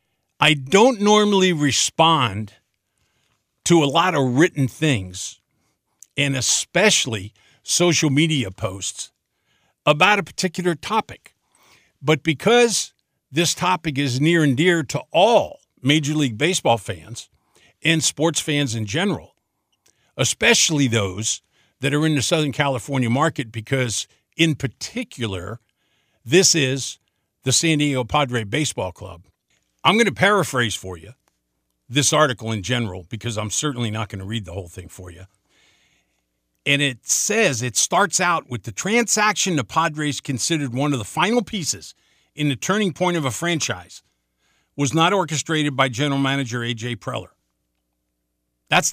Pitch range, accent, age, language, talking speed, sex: 110-165 Hz, American, 50-69, English, 140 wpm, male